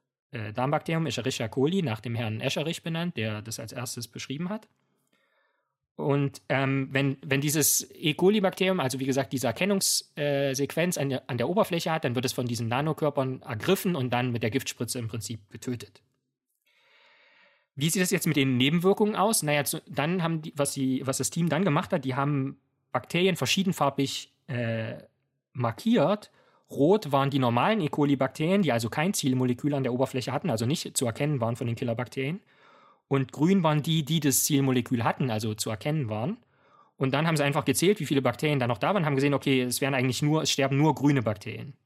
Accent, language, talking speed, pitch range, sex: German, German, 190 wpm, 125-150 Hz, male